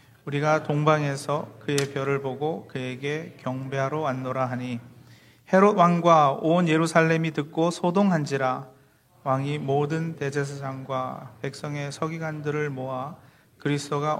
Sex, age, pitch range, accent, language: male, 40-59, 135-160 Hz, native, Korean